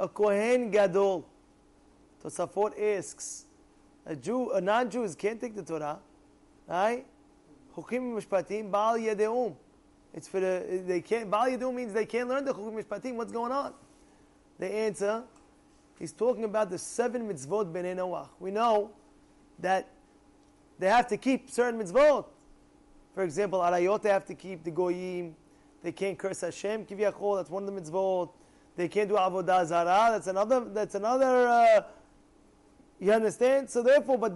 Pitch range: 195-250 Hz